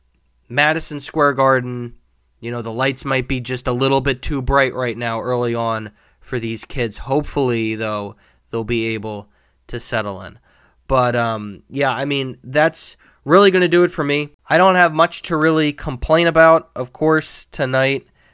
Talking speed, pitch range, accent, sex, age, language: 175 wpm, 110-135 Hz, American, male, 20-39, English